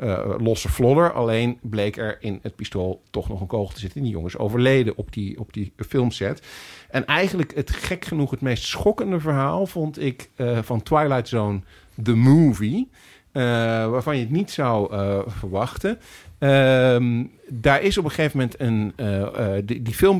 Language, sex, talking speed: Dutch, male, 180 wpm